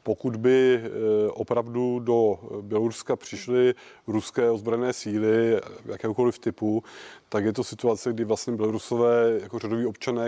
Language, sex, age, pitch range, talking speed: Czech, male, 30-49, 110-120 Hz, 125 wpm